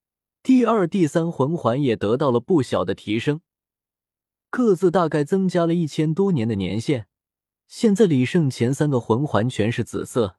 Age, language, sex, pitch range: 20-39, Chinese, male, 115-165 Hz